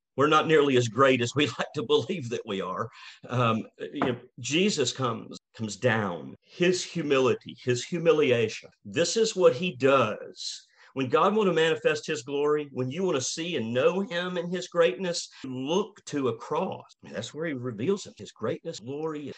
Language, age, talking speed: English, 50-69, 190 wpm